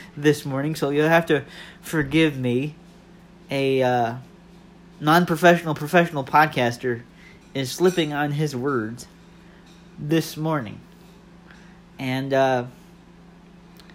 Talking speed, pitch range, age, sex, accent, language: 95 wpm, 145-180 Hz, 40-59, male, American, English